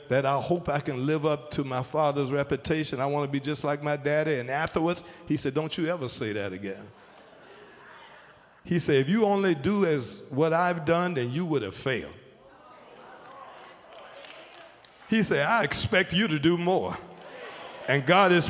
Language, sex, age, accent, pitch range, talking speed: English, male, 50-69, American, 150-195 Hz, 180 wpm